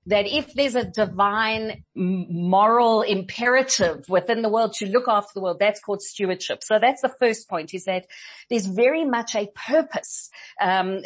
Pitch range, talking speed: 185-235 Hz, 170 wpm